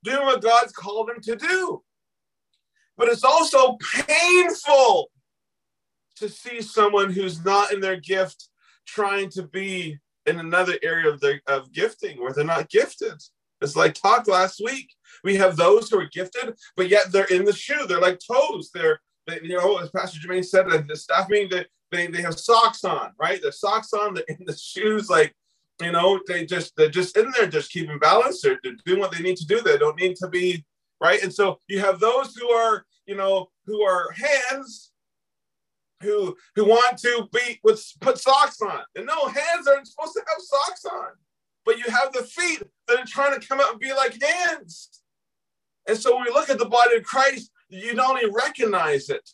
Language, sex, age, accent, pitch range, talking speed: English, male, 30-49, American, 190-285 Hz, 200 wpm